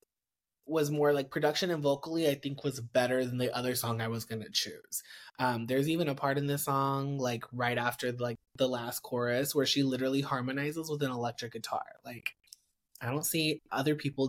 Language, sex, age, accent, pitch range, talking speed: English, male, 20-39, American, 125-150 Hz, 200 wpm